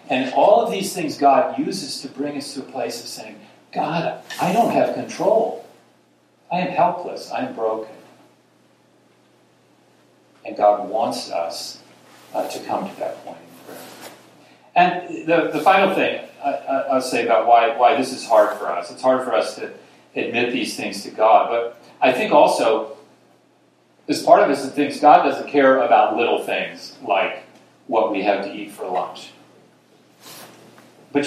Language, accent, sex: English, American, male